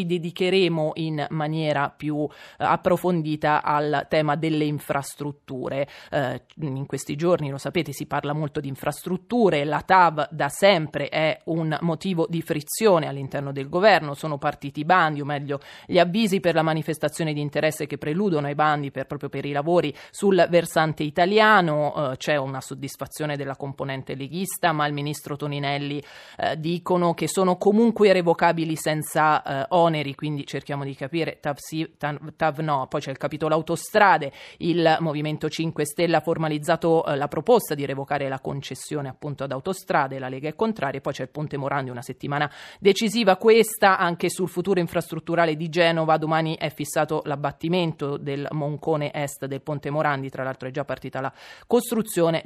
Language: Italian